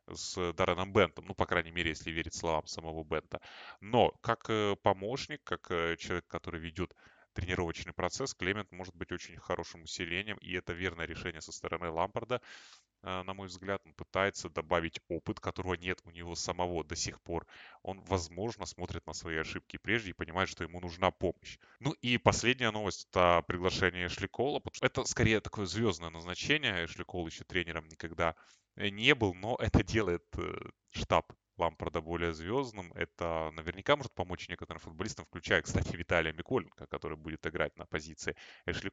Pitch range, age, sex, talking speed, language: 85-105 Hz, 20-39, male, 160 wpm, Russian